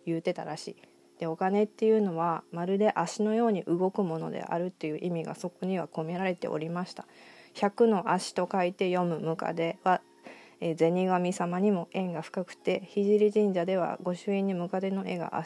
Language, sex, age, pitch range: Japanese, female, 20-39, 170-205 Hz